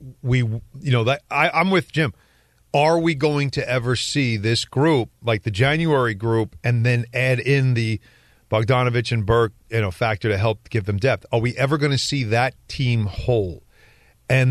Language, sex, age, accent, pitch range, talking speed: English, male, 40-59, American, 115-150 Hz, 190 wpm